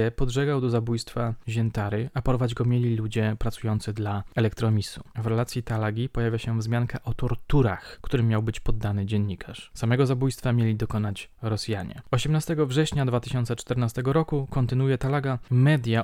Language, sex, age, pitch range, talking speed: Polish, male, 20-39, 110-130 Hz, 140 wpm